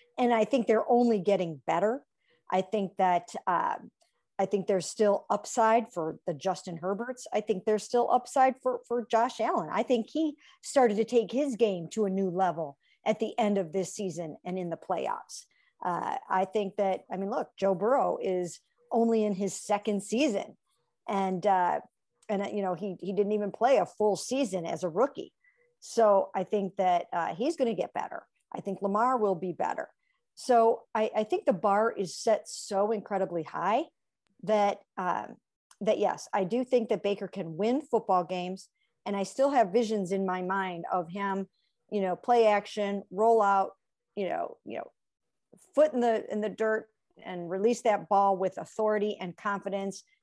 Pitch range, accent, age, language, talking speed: 185-230 Hz, American, 50-69, English, 190 wpm